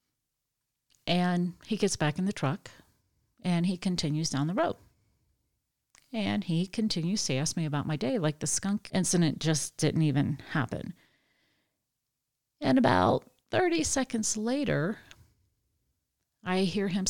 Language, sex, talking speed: English, female, 135 wpm